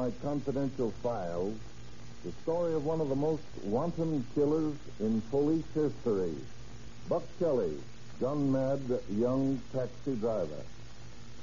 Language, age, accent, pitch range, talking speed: English, 60-79, American, 120-160 Hz, 105 wpm